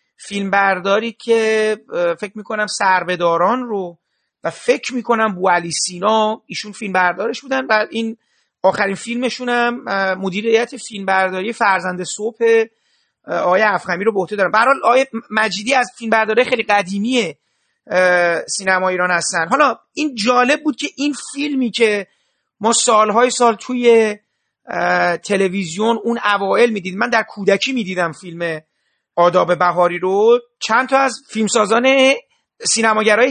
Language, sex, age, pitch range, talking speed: Persian, male, 40-59, 195-245 Hz, 125 wpm